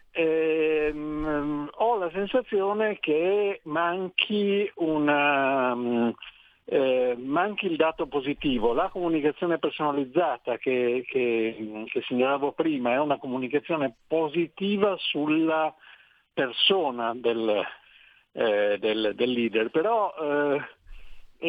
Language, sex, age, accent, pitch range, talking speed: Italian, male, 60-79, native, 130-190 Hz, 100 wpm